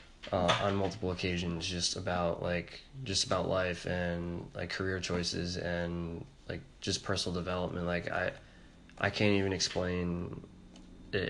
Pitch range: 90-100 Hz